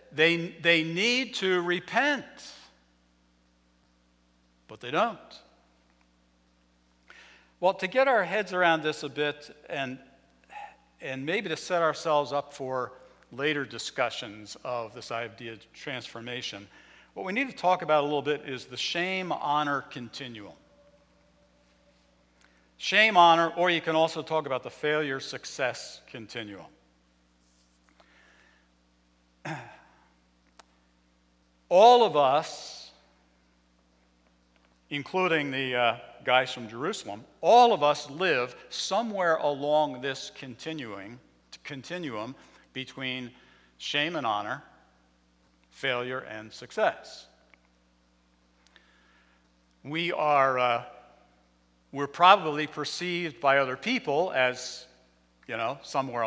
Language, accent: English, American